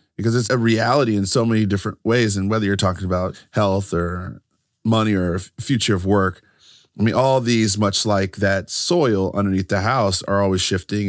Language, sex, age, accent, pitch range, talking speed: English, male, 30-49, American, 100-150 Hz, 190 wpm